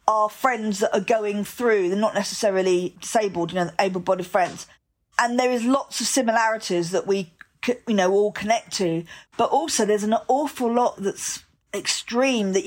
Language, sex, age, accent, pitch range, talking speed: English, female, 40-59, British, 200-245 Hz, 170 wpm